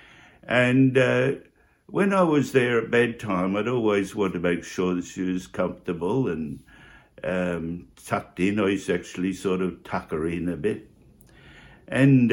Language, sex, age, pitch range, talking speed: English, male, 60-79, 90-120 Hz, 160 wpm